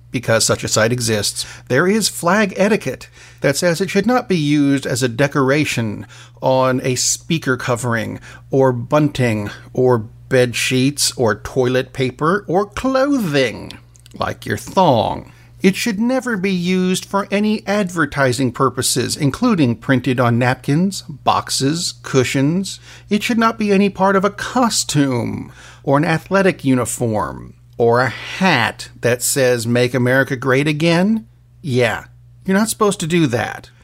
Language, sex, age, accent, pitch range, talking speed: English, male, 50-69, American, 120-180 Hz, 140 wpm